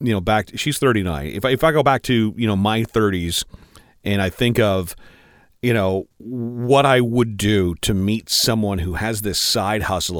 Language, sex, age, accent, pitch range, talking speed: English, male, 40-59, American, 100-135 Hz, 200 wpm